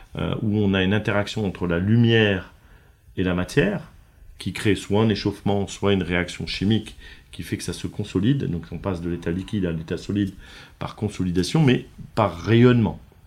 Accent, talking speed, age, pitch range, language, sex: French, 180 wpm, 50-69, 90-110 Hz, French, male